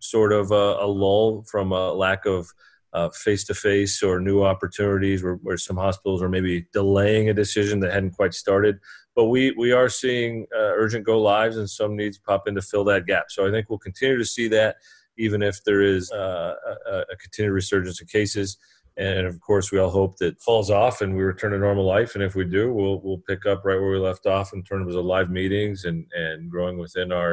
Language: English